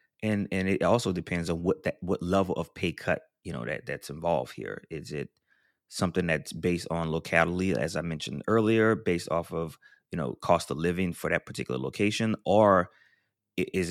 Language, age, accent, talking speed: English, 30-49, American, 190 wpm